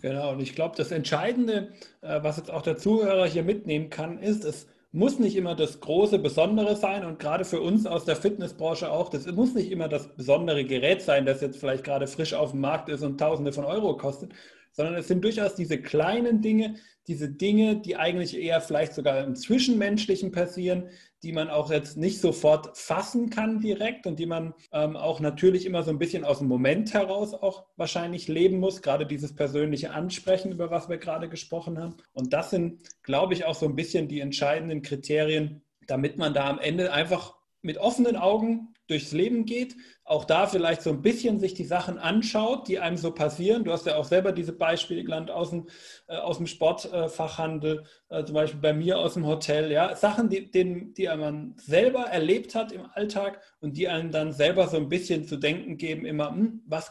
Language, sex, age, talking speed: German, male, 30-49, 195 wpm